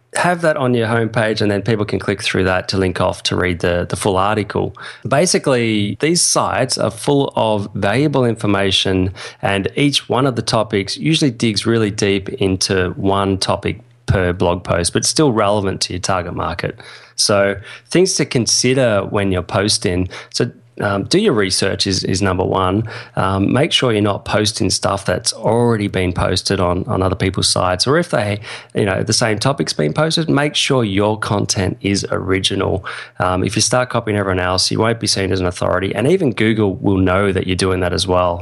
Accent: Australian